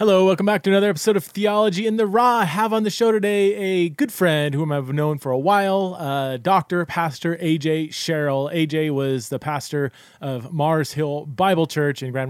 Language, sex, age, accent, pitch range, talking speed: English, male, 30-49, American, 125-155 Hz, 205 wpm